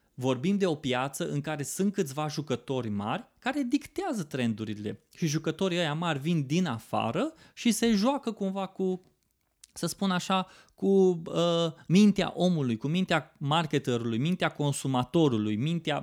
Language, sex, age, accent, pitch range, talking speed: Romanian, male, 20-39, native, 145-195 Hz, 140 wpm